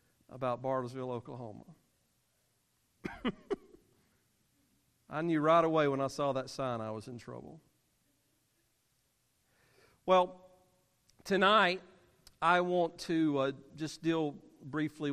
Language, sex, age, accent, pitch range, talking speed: English, male, 50-69, American, 125-160 Hz, 100 wpm